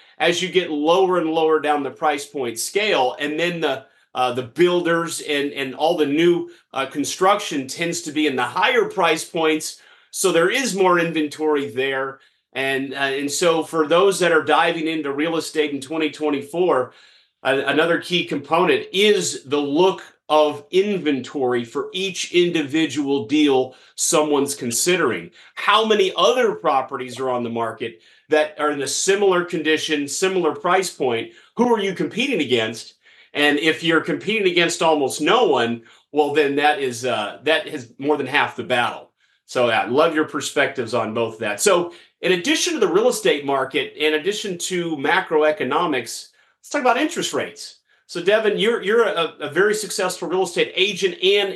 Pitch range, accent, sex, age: 145-190 Hz, American, male, 30-49